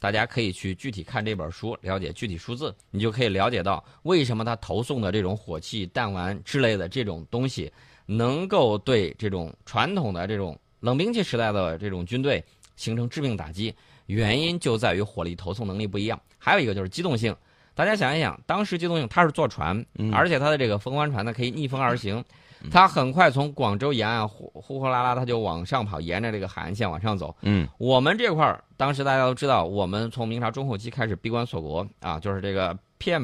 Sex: male